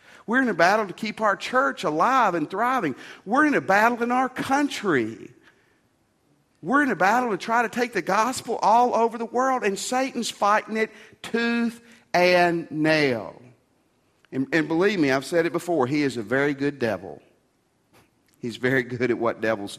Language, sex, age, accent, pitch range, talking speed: English, male, 50-69, American, 125-200 Hz, 180 wpm